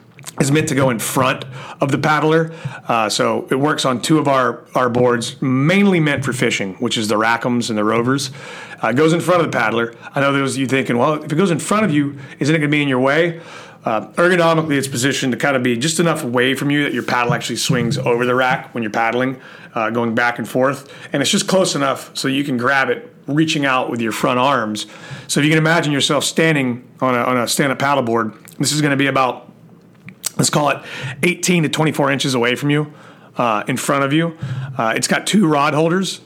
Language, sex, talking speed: English, male, 240 wpm